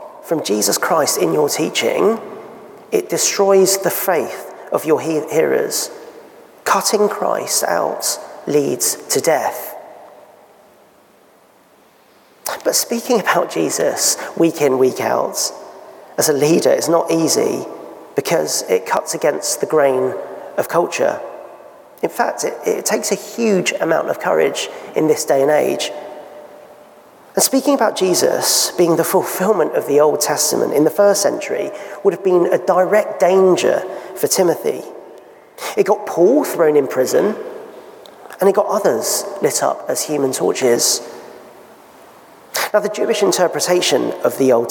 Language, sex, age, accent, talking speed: English, male, 40-59, British, 135 wpm